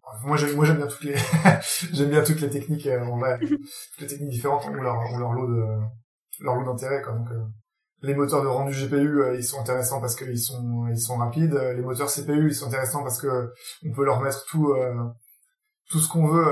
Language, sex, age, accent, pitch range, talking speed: French, male, 20-39, French, 125-150 Hz, 235 wpm